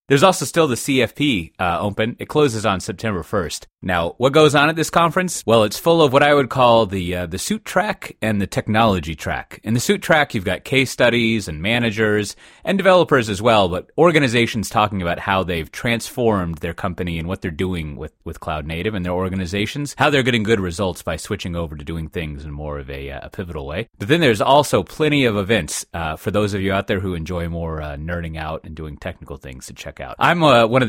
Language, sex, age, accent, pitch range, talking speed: English, male, 30-49, American, 85-120 Hz, 235 wpm